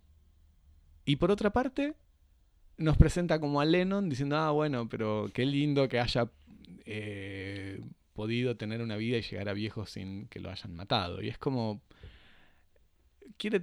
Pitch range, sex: 95-135 Hz, male